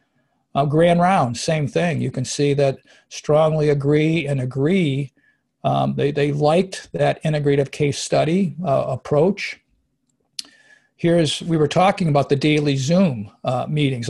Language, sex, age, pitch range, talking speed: English, male, 50-69, 145-175 Hz, 140 wpm